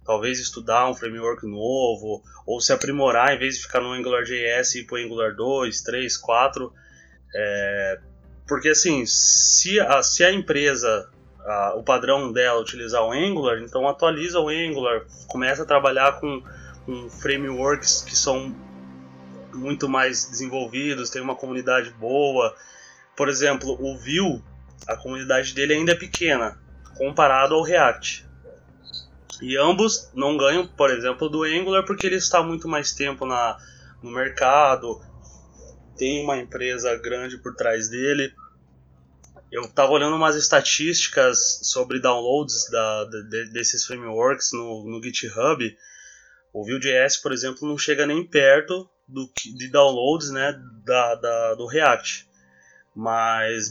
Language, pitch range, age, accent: Portuguese, 115-145 Hz, 20-39, Brazilian